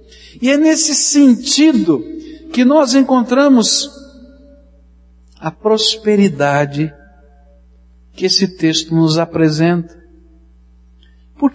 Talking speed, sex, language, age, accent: 80 wpm, male, Portuguese, 60-79, Brazilian